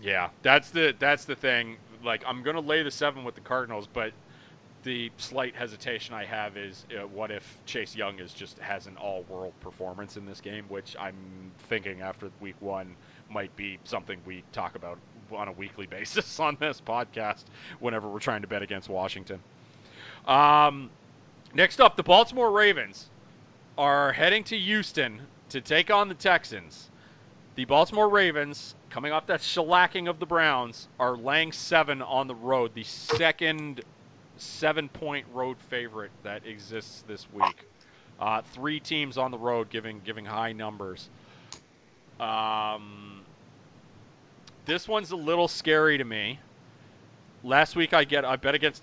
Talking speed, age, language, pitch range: 155 wpm, 30-49, English, 110-150 Hz